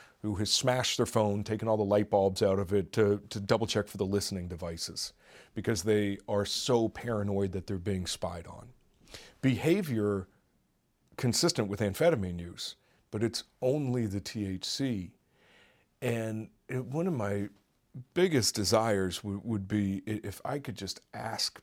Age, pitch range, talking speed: 40-59, 95-120 Hz, 150 wpm